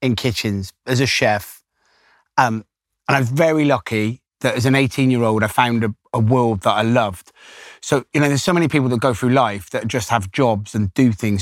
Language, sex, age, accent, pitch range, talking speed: English, male, 30-49, British, 110-135 Hz, 225 wpm